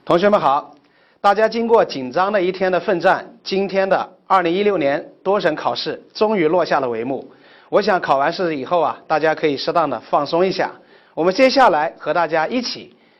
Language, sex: Chinese, male